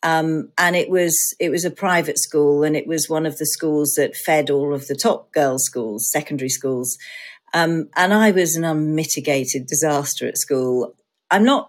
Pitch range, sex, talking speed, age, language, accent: 140-175 Hz, female, 190 wpm, 40-59, English, British